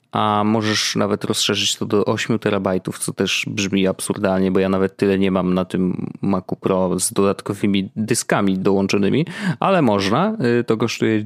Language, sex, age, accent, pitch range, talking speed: Polish, male, 30-49, native, 100-125 Hz, 160 wpm